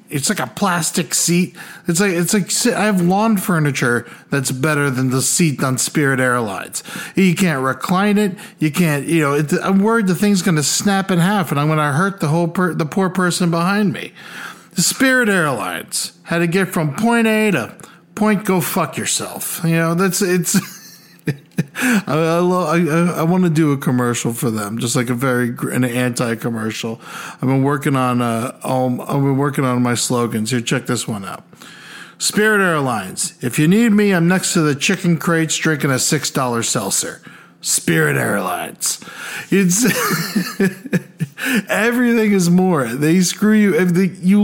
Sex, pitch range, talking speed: male, 140-205 Hz, 175 wpm